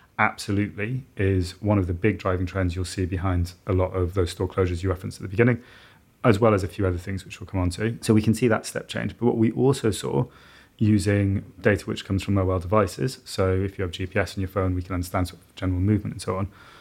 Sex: male